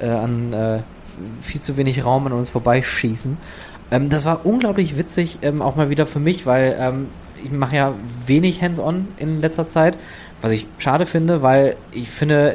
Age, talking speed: 20-39, 175 wpm